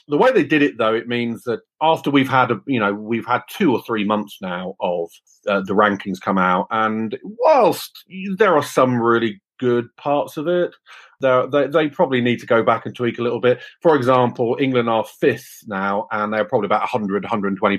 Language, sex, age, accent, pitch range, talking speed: English, male, 40-59, British, 100-125 Hz, 210 wpm